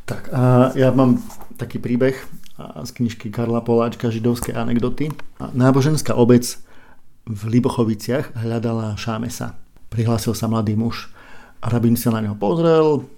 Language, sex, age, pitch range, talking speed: Slovak, male, 50-69, 115-130 Hz, 125 wpm